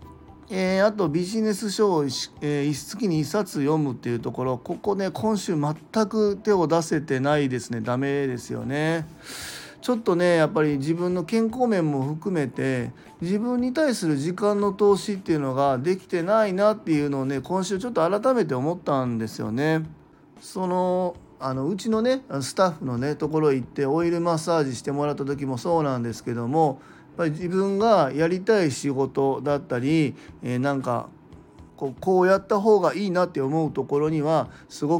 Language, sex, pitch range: Japanese, male, 140-190 Hz